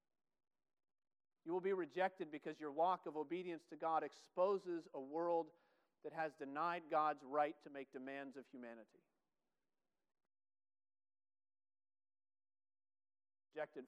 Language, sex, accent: English, male, American